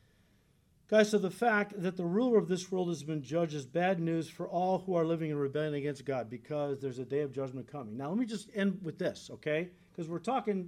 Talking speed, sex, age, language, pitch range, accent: 240 wpm, male, 40-59, English, 165-220 Hz, American